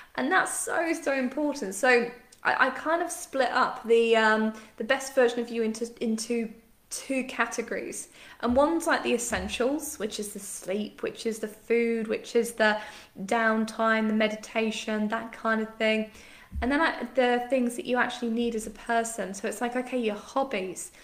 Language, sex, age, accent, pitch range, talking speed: English, female, 10-29, British, 215-250 Hz, 185 wpm